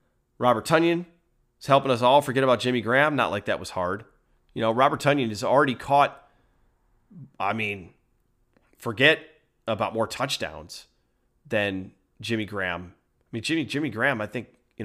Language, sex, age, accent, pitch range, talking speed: English, male, 30-49, American, 110-145 Hz, 160 wpm